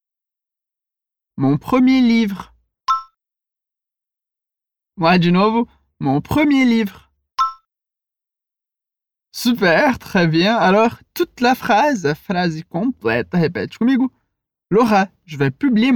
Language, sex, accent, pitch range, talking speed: Portuguese, male, French, 175-265 Hz, 100 wpm